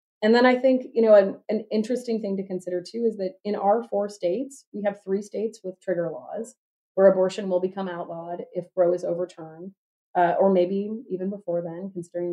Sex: female